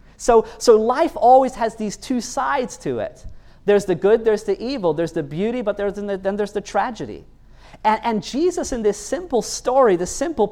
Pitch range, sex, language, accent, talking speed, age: 175-235 Hz, male, English, American, 195 wpm, 40-59